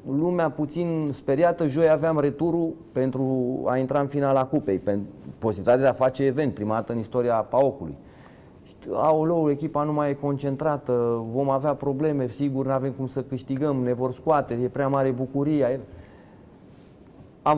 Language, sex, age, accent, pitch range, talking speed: Romanian, male, 30-49, native, 110-145 Hz, 155 wpm